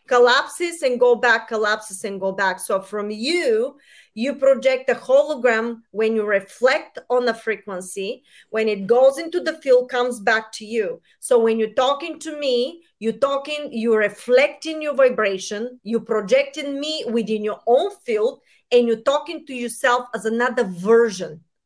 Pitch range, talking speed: 220-275 Hz, 160 wpm